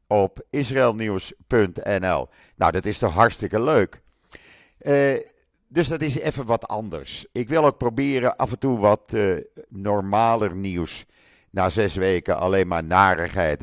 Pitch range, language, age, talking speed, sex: 90-125 Hz, Dutch, 50-69, 140 wpm, male